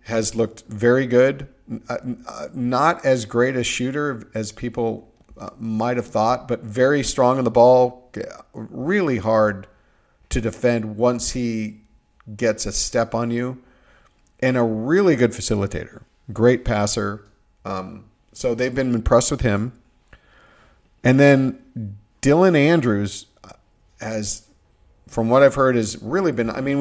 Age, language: 50-69, English